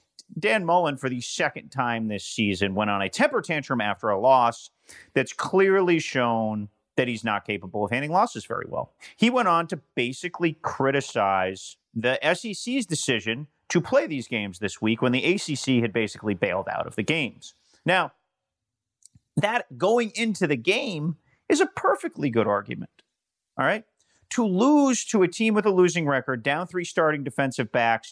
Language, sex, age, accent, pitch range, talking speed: English, male, 30-49, American, 120-185 Hz, 170 wpm